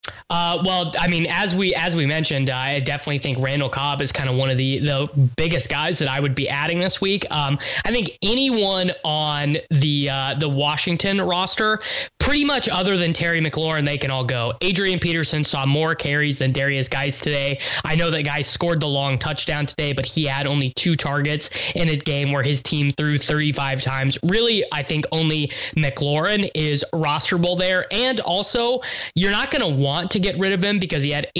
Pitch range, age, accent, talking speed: 140-180 Hz, 20-39, American, 210 wpm